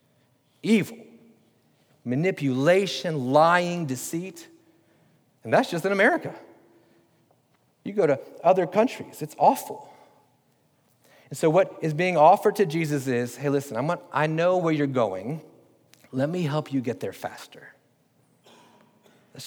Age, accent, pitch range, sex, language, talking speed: 40-59, American, 125-155 Hz, male, English, 130 wpm